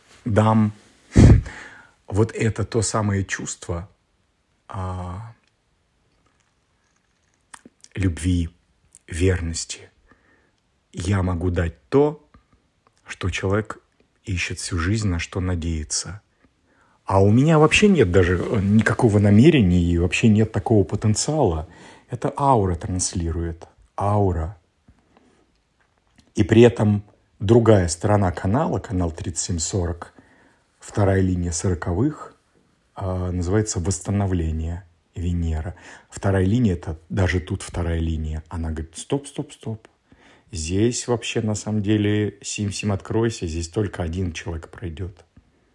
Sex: male